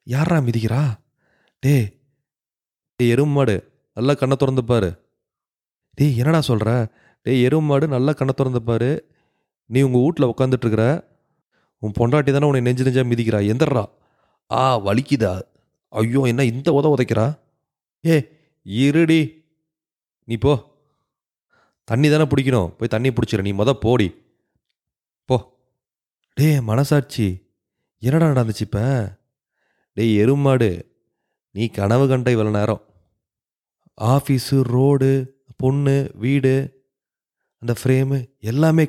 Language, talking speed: English, 125 wpm